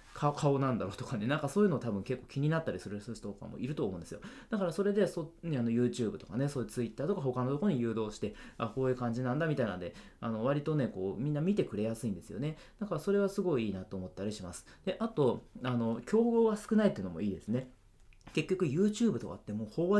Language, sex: Japanese, male